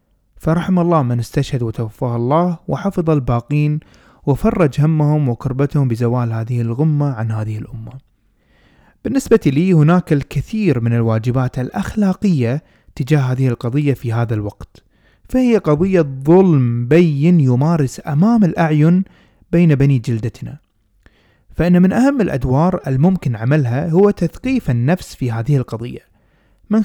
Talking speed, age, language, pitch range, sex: 120 wpm, 20-39, Arabic, 125-160 Hz, male